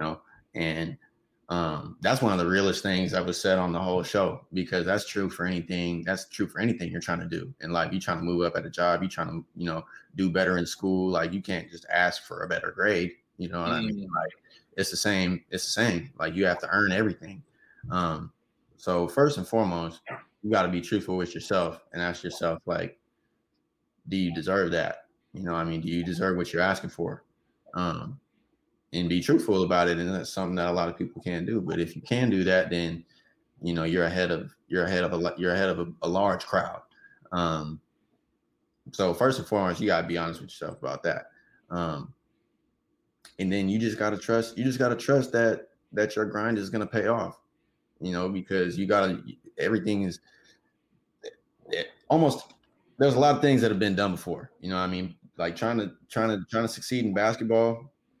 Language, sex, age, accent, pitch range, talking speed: English, male, 20-39, American, 85-105 Hz, 220 wpm